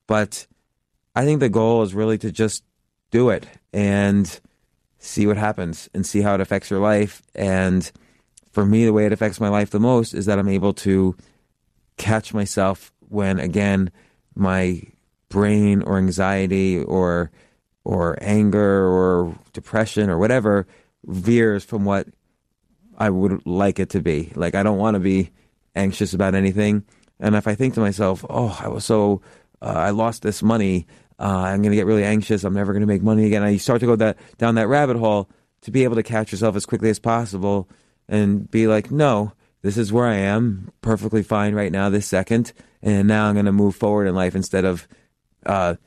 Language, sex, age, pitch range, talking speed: English, male, 30-49, 95-110 Hz, 190 wpm